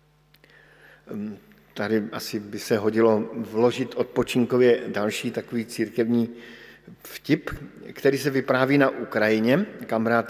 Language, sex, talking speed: Slovak, male, 105 wpm